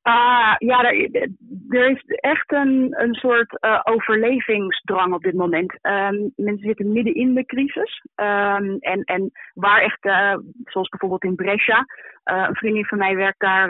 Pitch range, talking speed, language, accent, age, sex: 195-225 Hz, 170 wpm, Dutch, Dutch, 30-49, female